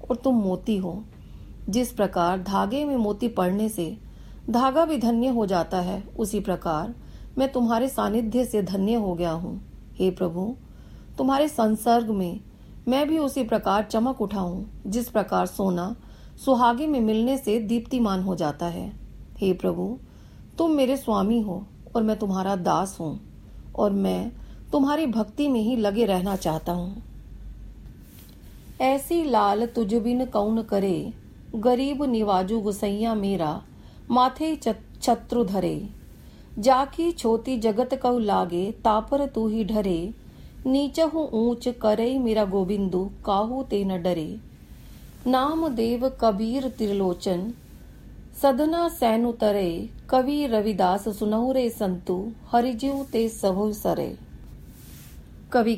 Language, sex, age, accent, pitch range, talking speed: Hindi, female, 40-59, native, 195-250 Hz, 125 wpm